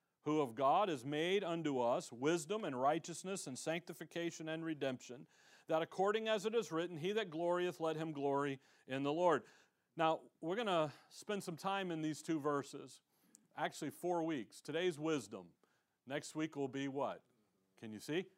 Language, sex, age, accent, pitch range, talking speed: English, male, 50-69, American, 155-195 Hz, 175 wpm